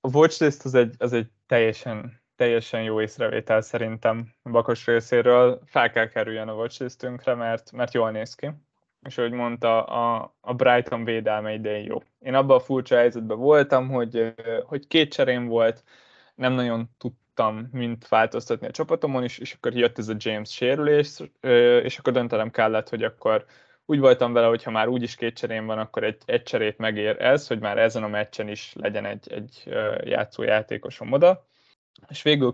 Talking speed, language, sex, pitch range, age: 175 wpm, Hungarian, male, 115-130 Hz, 20-39